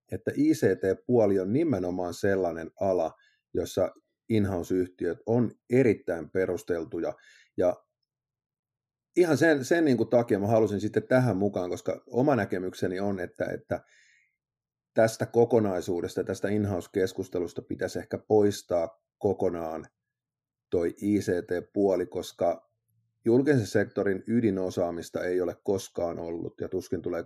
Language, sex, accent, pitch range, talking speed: Finnish, male, native, 90-115 Hz, 105 wpm